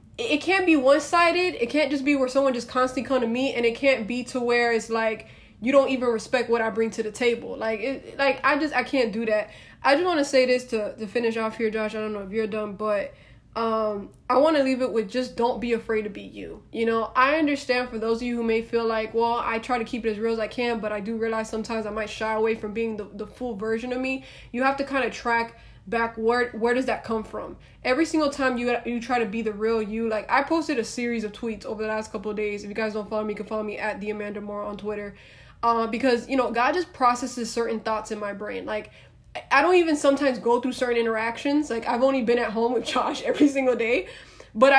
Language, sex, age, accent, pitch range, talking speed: English, female, 20-39, American, 220-255 Hz, 270 wpm